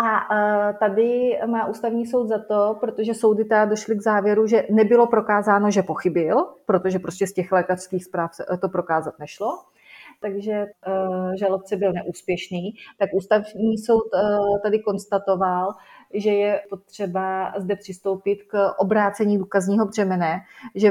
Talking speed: 130 wpm